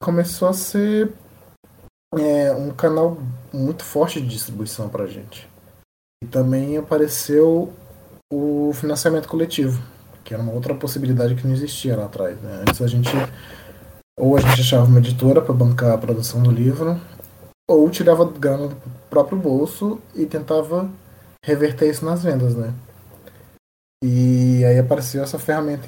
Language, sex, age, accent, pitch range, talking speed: Portuguese, male, 20-39, Brazilian, 115-145 Hz, 145 wpm